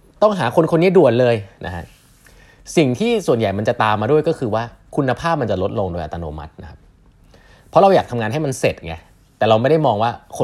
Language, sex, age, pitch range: Thai, male, 30-49, 95-135 Hz